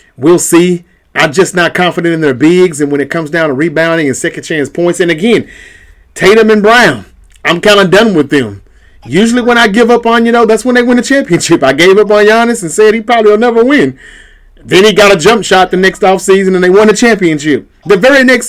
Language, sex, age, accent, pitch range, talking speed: English, male, 30-49, American, 145-190 Hz, 245 wpm